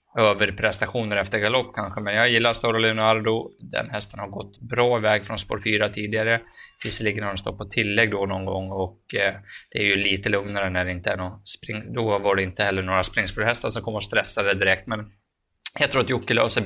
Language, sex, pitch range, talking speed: Swedish, male, 100-110 Hz, 215 wpm